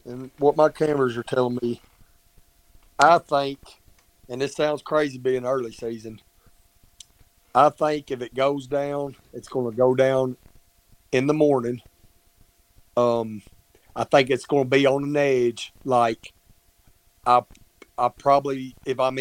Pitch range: 115-150 Hz